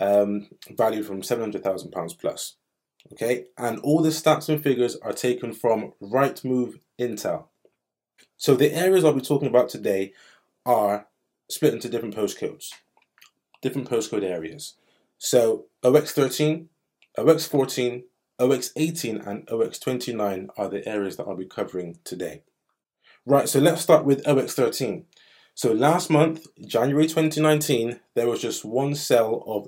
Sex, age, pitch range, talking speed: male, 20-39, 115-150 Hz, 130 wpm